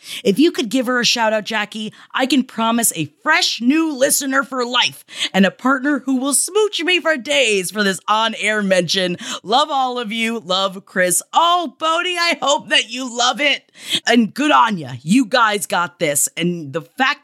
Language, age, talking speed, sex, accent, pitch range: English, 30-49, 190 wpm, female, American, 185-285 Hz